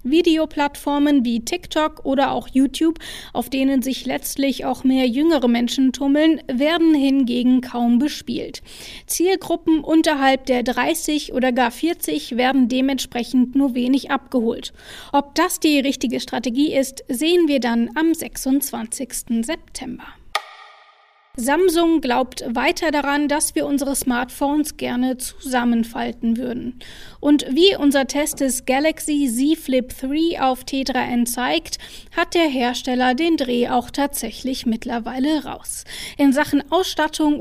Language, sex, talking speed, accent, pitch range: German, female, 125 wpm, German, 255-305 Hz